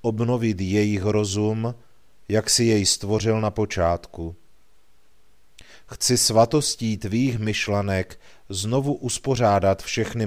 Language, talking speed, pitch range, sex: Czech, 95 wpm, 100-115 Hz, male